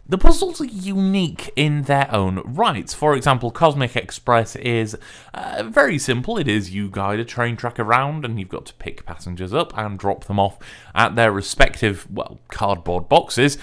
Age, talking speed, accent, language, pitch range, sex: 20-39, 180 wpm, British, English, 115-170 Hz, male